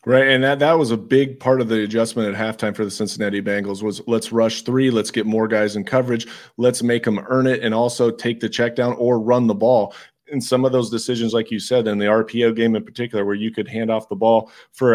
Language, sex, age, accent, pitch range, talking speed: English, male, 30-49, American, 110-125 Hz, 255 wpm